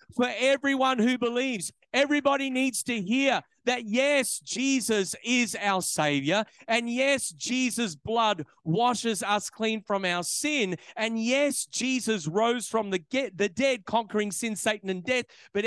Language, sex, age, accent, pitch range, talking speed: English, male, 40-59, Australian, 175-240 Hz, 150 wpm